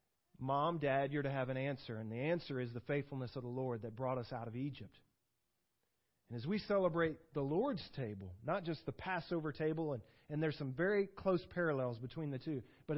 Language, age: English, 40-59